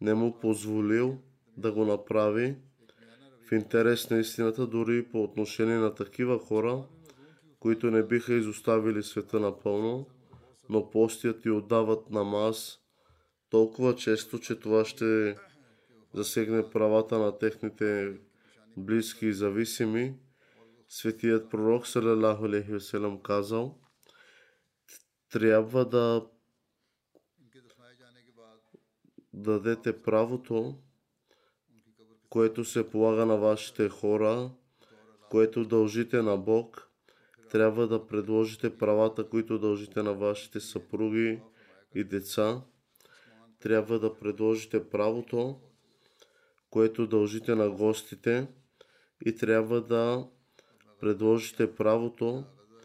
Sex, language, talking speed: male, Bulgarian, 95 wpm